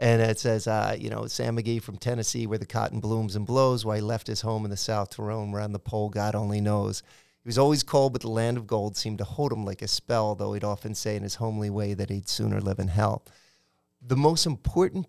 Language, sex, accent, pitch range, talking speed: English, male, American, 105-120 Hz, 260 wpm